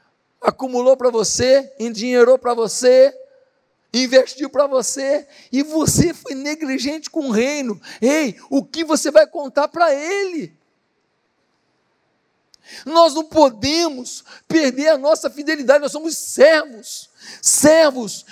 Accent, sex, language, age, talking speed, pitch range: Brazilian, male, Portuguese, 50-69, 115 wpm, 200-285 Hz